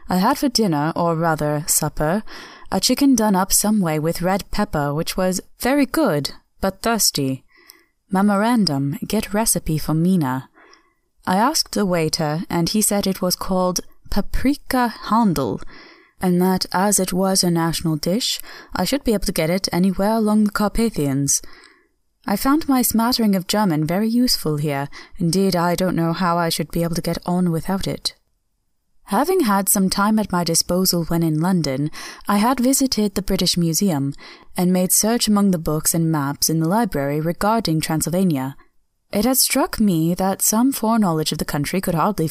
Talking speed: 175 wpm